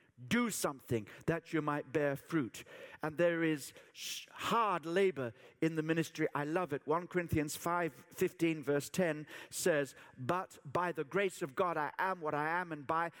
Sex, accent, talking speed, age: male, British, 175 wpm, 50-69